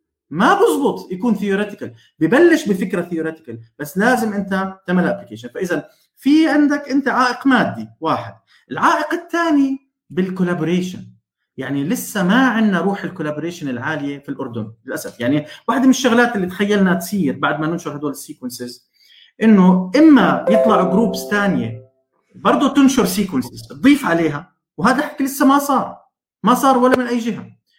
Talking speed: 140 wpm